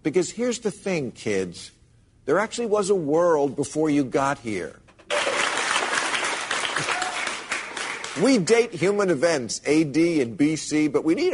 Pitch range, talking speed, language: 120-170 Hz, 125 wpm, English